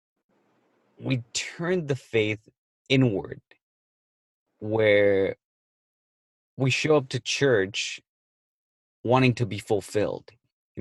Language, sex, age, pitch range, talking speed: English, male, 30-49, 100-130 Hz, 90 wpm